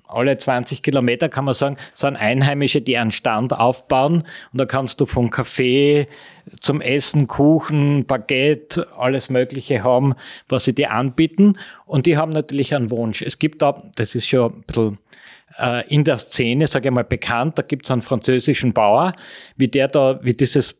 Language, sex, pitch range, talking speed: German, male, 120-140 Hz, 175 wpm